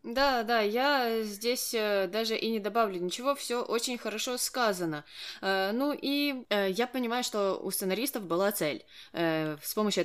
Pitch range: 170-215 Hz